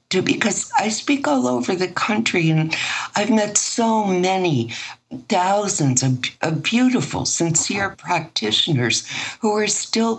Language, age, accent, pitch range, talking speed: English, 60-79, American, 140-185 Hz, 125 wpm